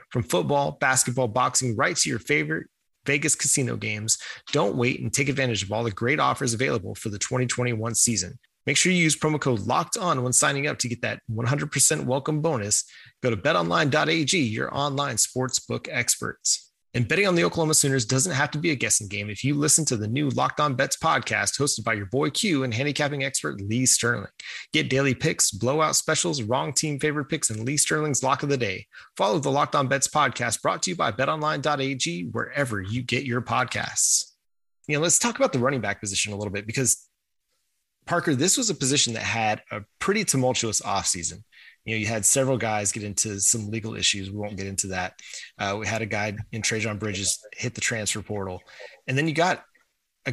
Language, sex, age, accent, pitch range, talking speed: English, male, 30-49, American, 110-140 Hz, 205 wpm